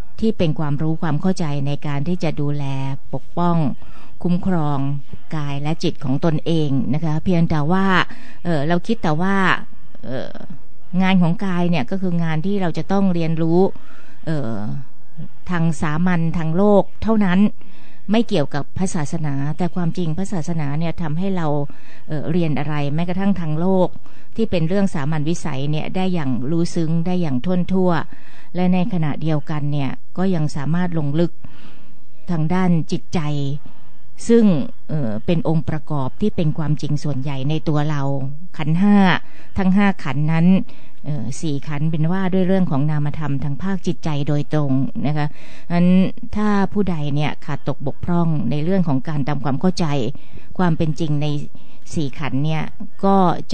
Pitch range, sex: 145-180 Hz, female